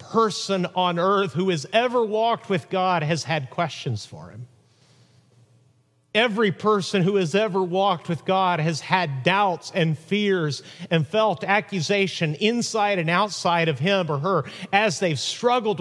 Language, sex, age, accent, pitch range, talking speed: English, male, 40-59, American, 135-190 Hz, 150 wpm